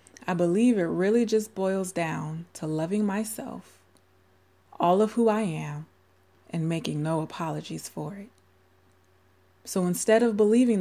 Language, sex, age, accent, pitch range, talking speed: English, female, 20-39, American, 140-200 Hz, 140 wpm